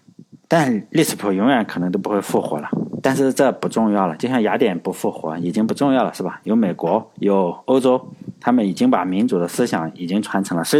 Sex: male